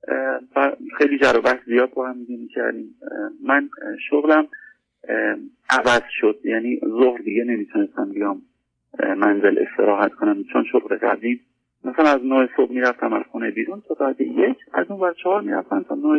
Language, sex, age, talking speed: Persian, male, 40-59, 160 wpm